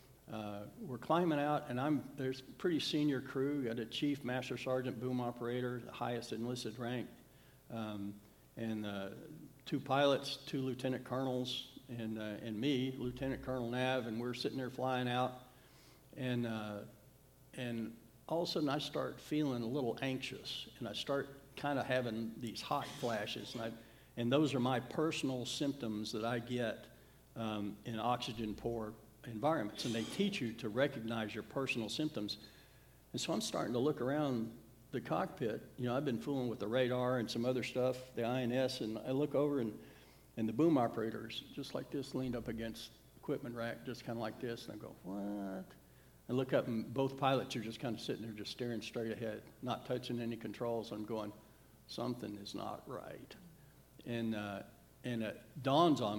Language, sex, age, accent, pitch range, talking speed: English, male, 60-79, American, 115-135 Hz, 185 wpm